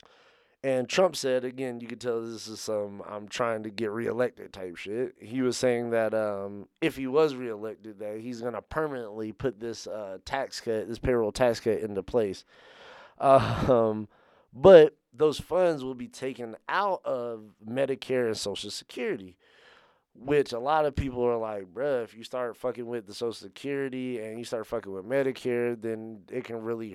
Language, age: English, 20-39